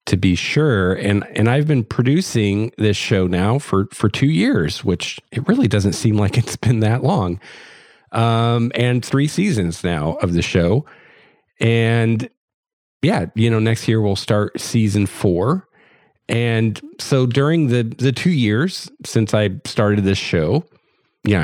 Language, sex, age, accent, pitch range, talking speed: English, male, 40-59, American, 100-125 Hz, 155 wpm